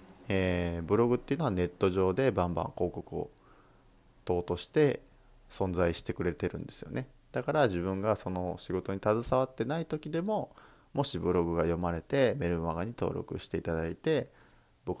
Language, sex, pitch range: Japanese, male, 85-140 Hz